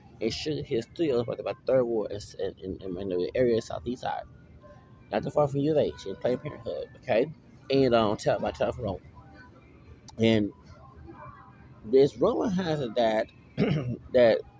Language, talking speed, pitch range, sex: English, 170 wpm, 110-145 Hz, male